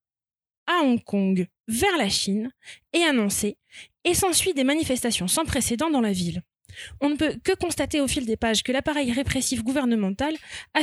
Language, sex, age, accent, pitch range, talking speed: French, female, 20-39, French, 225-305 Hz, 170 wpm